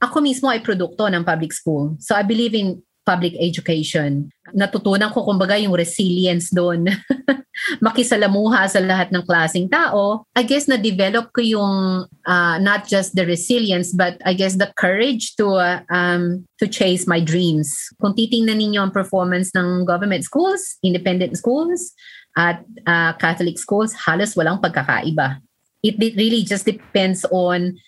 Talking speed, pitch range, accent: 150 wpm, 175-215 Hz, native